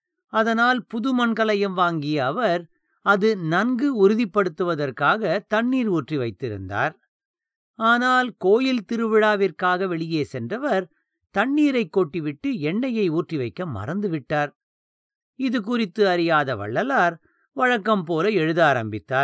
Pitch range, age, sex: 155-230 Hz, 50-69, male